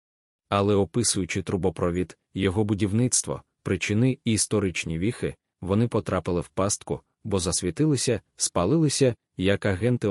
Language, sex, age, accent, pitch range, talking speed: Ukrainian, male, 20-39, native, 95-115 Hz, 105 wpm